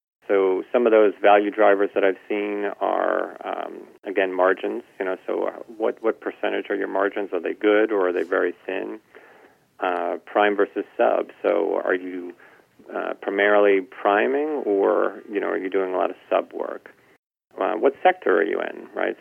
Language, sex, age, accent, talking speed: English, male, 40-59, American, 180 wpm